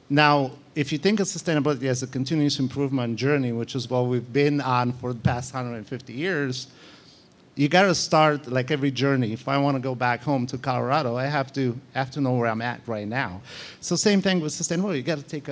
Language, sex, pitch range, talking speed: English, male, 125-150 Hz, 225 wpm